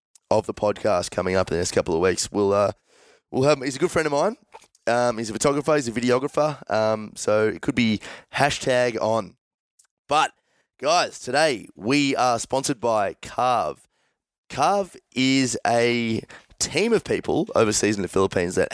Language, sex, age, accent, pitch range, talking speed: English, male, 20-39, Australian, 110-145 Hz, 175 wpm